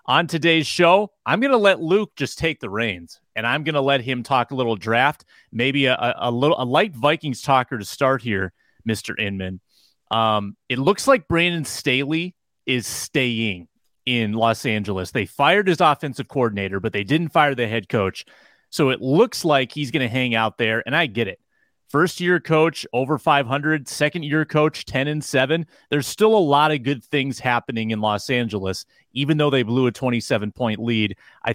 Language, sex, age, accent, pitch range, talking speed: English, male, 30-49, American, 115-155 Hz, 195 wpm